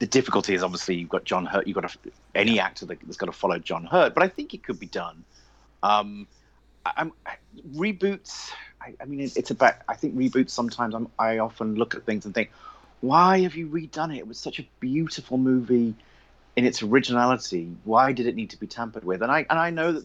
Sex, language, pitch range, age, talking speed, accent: male, English, 95-130 Hz, 30-49, 230 wpm, British